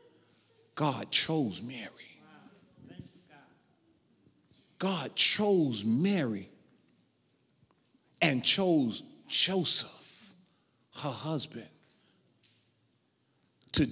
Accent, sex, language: American, male, English